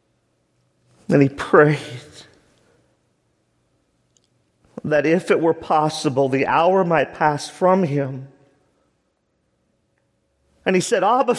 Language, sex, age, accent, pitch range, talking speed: English, male, 50-69, American, 115-165 Hz, 100 wpm